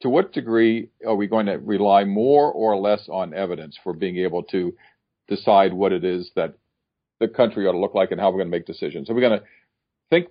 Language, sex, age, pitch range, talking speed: English, male, 50-69, 95-115 Hz, 235 wpm